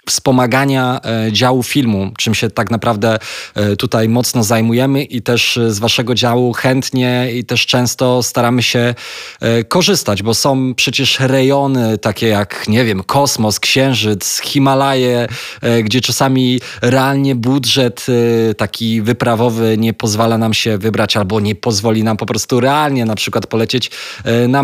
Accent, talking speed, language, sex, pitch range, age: native, 135 wpm, Polish, male, 110-125 Hz, 20-39